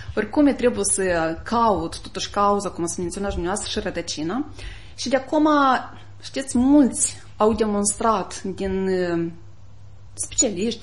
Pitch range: 170-250 Hz